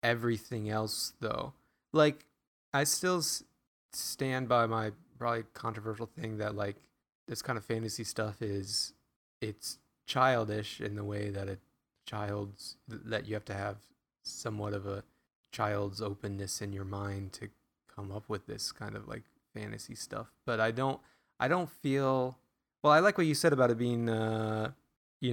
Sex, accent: male, American